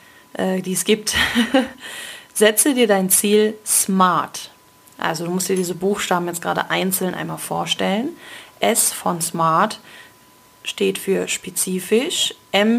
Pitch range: 185-215 Hz